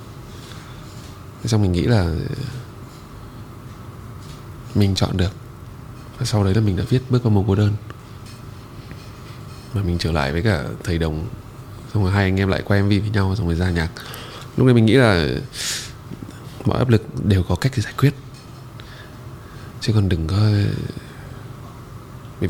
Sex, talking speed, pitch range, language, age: male, 160 wpm, 105-135 Hz, Vietnamese, 20-39